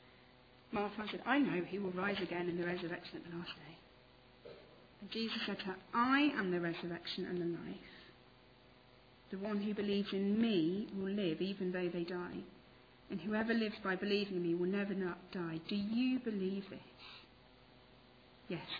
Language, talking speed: English, 170 wpm